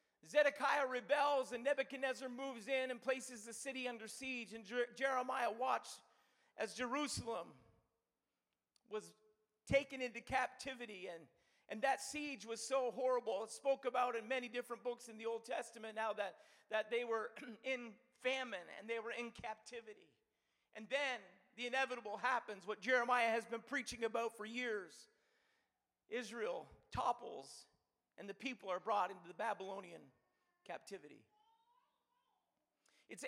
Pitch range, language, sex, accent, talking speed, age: 220-265 Hz, English, male, American, 135 wpm, 40-59